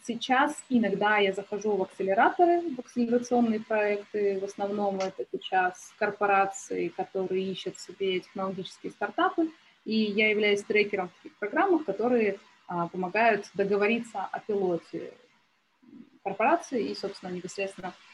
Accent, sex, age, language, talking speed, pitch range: native, female, 20-39, Russian, 120 wpm, 190-235 Hz